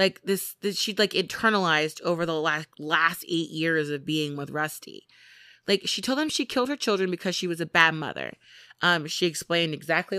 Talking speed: 200 wpm